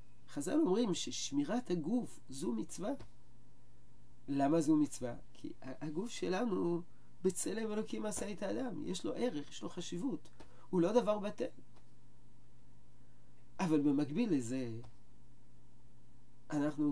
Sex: male